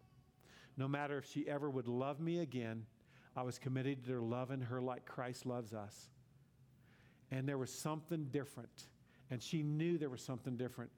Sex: male